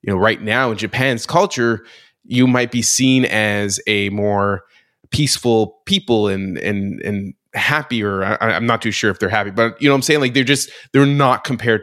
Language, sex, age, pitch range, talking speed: English, male, 20-39, 100-130 Hz, 205 wpm